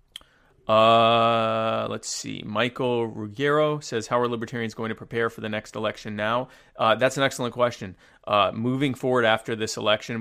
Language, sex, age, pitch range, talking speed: English, male, 30-49, 110-130 Hz, 165 wpm